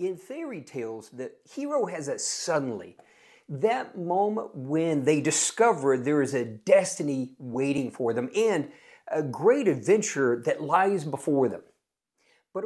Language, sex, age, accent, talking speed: English, male, 50-69, American, 140 wpm